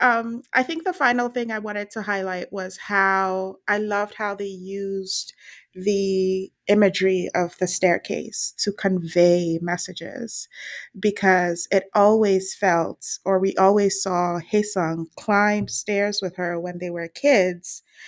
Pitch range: 180-205 Hz